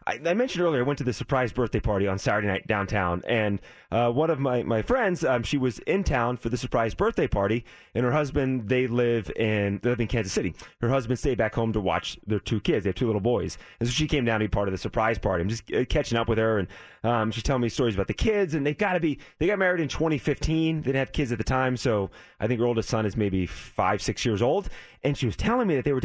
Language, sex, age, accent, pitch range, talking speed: English, male, 30-49, American, 110-155 Hz, 265 wpm